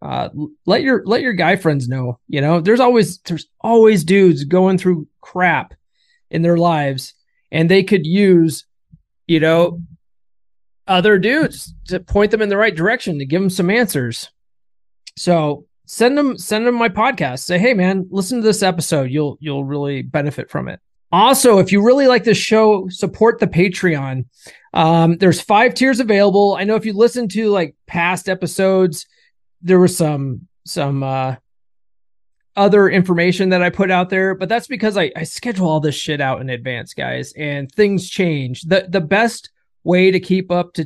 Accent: American